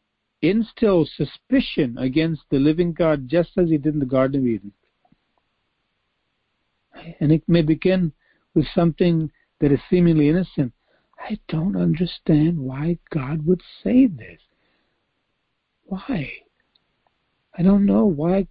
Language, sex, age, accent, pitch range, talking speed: English, male, 60-79, American, 120-170 Hz, 125 wpm